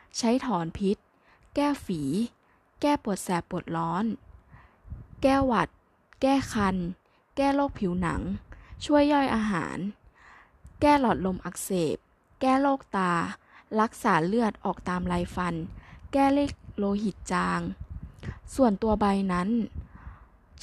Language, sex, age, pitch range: Thai, female, 10-29, 190-255 Hz